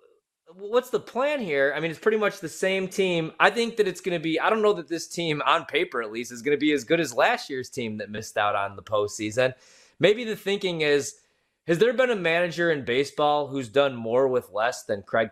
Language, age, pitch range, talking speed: English, 20-39, 110-160 Hz, 245 wpm